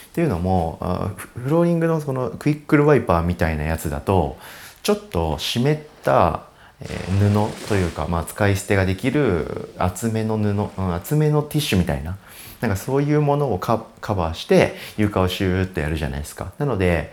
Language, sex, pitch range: Japanese, male, 85-140 Hz